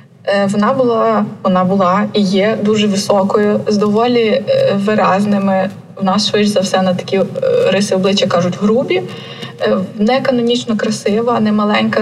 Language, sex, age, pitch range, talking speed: Ukrainian, female, 20-39, 205-235 Hz, 135 wpm